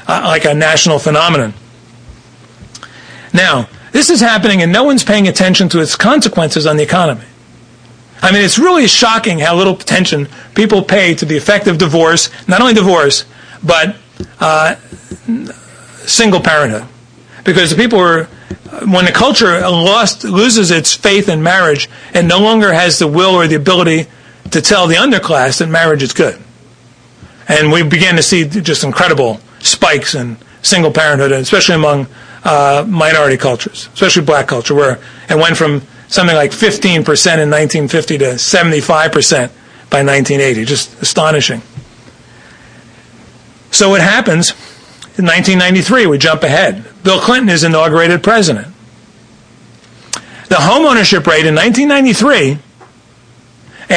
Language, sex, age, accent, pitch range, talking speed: English, male, 40-59, American, 150-200 Hz, 140 wpm